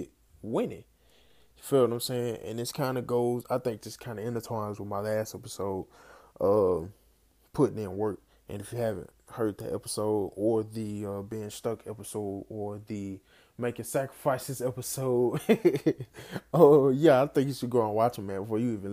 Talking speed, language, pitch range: 185 wpm, English, 100-125 Hz